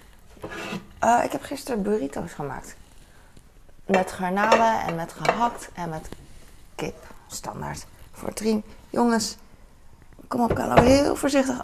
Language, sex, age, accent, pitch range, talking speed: Dutch, female, 20-39, Dutch, 160-210 Hz, 120 wpm